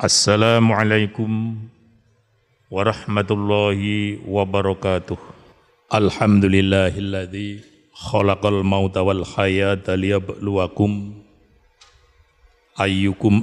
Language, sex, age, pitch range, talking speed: Indonesian, male, 50-69, 95-105 Hz, 45 wpm